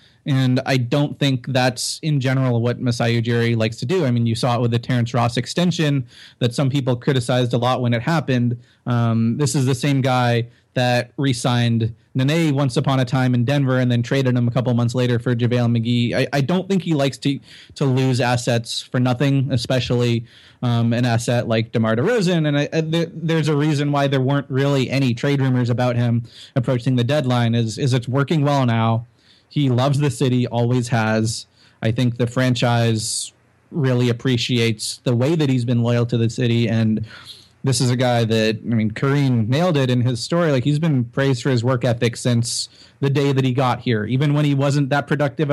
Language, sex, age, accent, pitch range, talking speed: English, male, 30-49, American, 120-140 Hz, 205 wpm